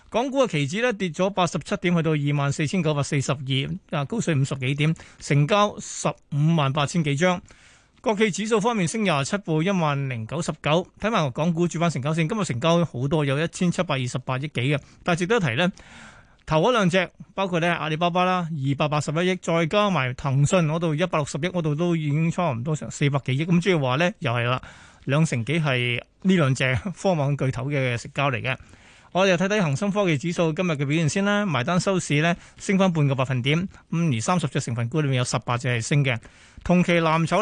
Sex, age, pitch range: male, 20-39, 145-180 Hz